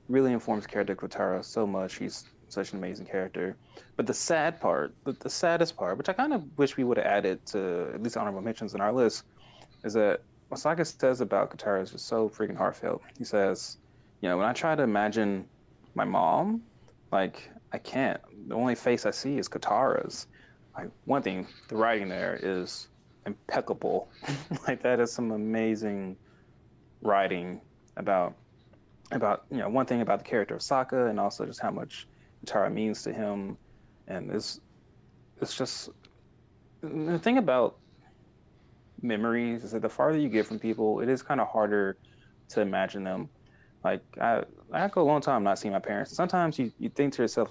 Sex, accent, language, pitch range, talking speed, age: male, American, English, 100-130 Hz, 180 wpm, 20-39